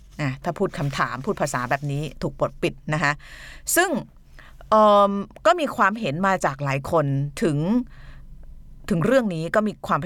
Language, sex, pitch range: Thai, female, 140-190 Hz